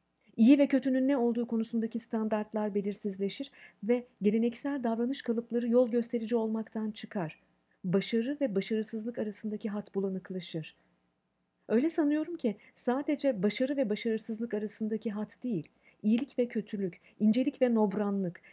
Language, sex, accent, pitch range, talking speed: Turkish, female, native, 200-250 Hz, 125 wpm